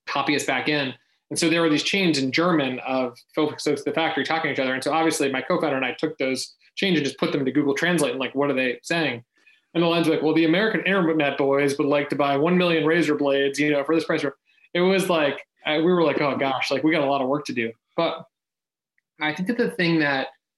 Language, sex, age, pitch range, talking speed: English, male, 20-39, 135-160 Hz, 260 wpm